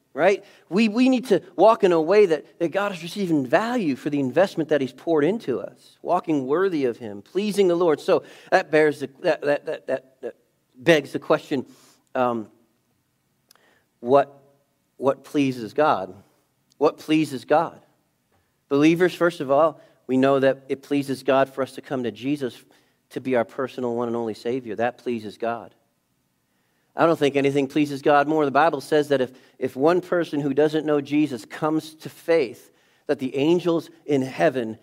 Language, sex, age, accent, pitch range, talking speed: English, male, 40-59, American, 130-165 Hz, 175 wpm